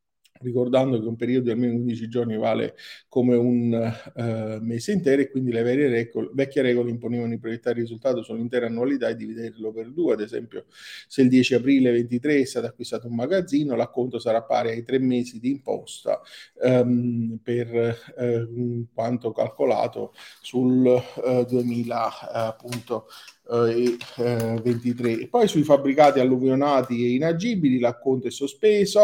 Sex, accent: male, native